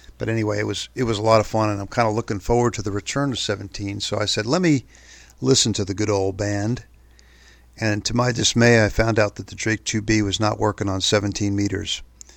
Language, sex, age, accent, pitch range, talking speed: English, male, 50-69, American, 95-115 Hz, 240 wpm